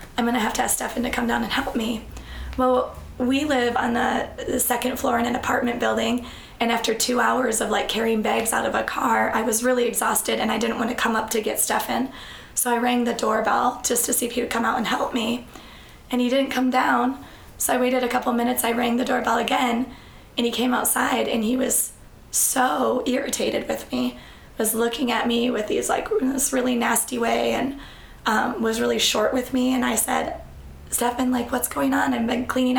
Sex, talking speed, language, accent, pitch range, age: female, 225 wpm, English, American, 235-255 Hz, 20-39